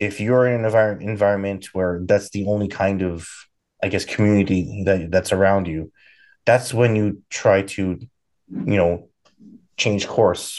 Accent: American